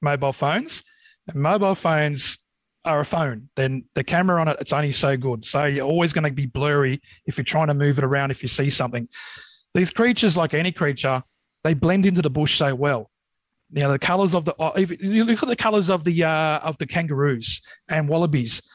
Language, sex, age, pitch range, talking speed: English, male, 30-49, 145-185 Hz, 210 wpm